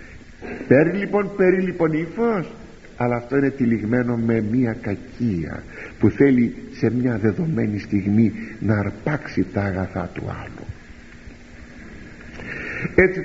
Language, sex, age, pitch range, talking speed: Greek, male, 60-79, 110-160 Hz, 110 wpm